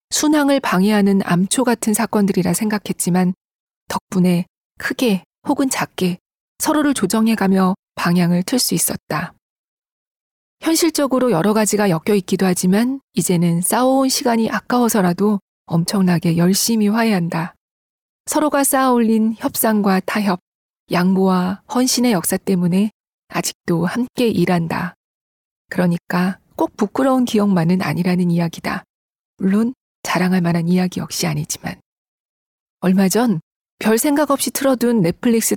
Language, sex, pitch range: Korean, female, 180-230 Hz